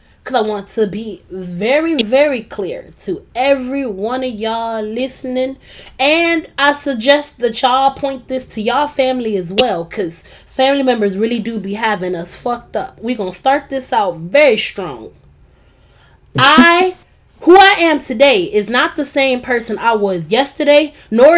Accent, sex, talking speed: American, female, 160 wpm